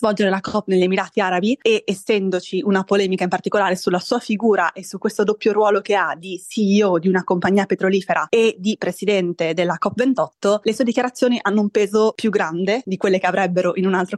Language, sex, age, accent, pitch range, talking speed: Italian, female, 20-39, native, 180-220 Hz, 205 wpm